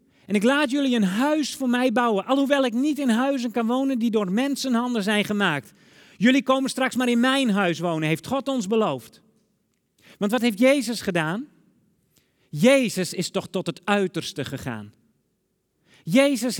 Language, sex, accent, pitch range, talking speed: Dutch, male, Dutch, 185-265 Hz, 165 wpm